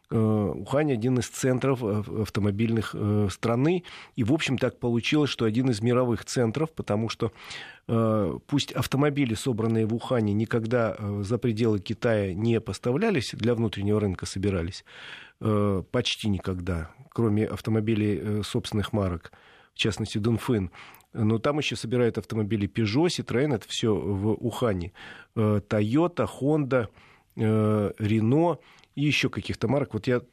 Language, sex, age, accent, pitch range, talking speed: Russian, male, 40-59, native, 105-130 Hz, 120 wpm